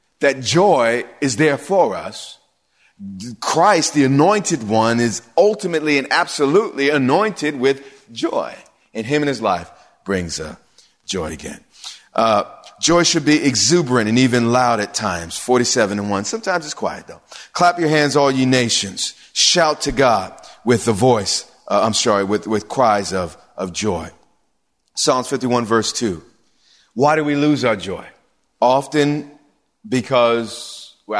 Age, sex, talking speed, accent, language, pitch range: 30-49, male, 150 wpm, American, English, 120-155 Hz